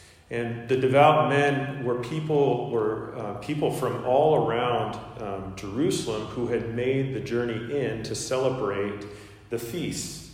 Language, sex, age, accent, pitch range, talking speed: English, male, 40-59, American, 105-130 Hz, 140 wpm